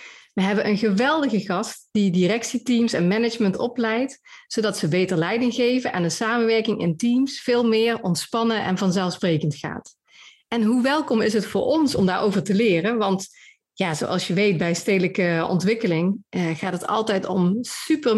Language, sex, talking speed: Dutch, female, 165 wpm